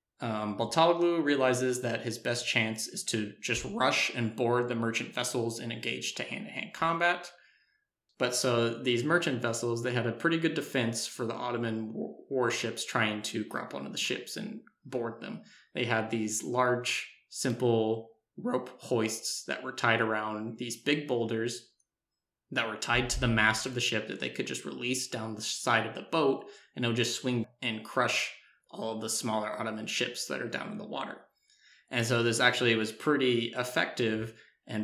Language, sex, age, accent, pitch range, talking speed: English, male, 20-39, American, 110-125 Hz, 185 wpm